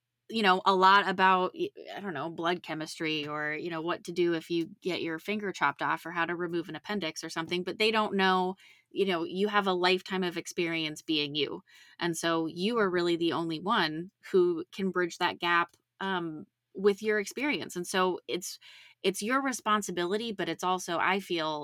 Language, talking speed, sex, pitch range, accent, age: English, 200 wpm, female, 165-200 Hz, American, 20-39